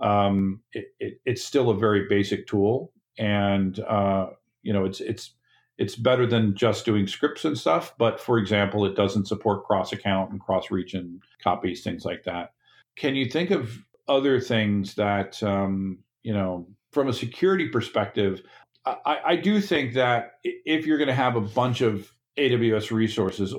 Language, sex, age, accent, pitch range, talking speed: English, male, 50-69, American, 100-120 Hz, 170 wpm